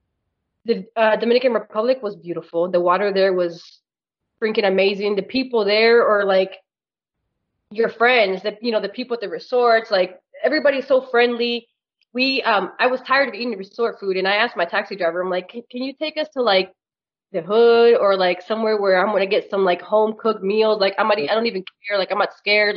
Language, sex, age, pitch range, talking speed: English, female, 20-39, 195-235 Hz, 215 wpm